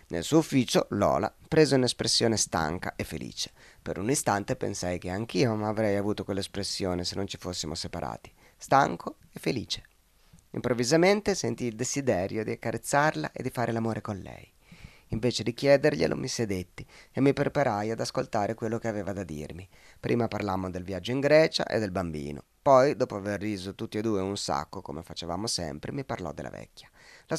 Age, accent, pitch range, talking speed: 30-49, native, 95-125 Hz, 175 wpm